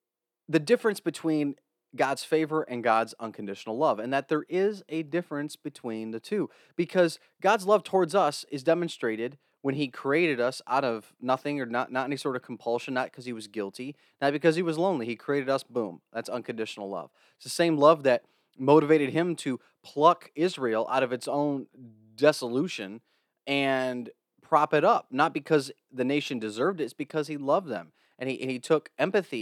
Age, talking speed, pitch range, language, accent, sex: 30-49, 190 wpm, 120-155 Hz, English, American, male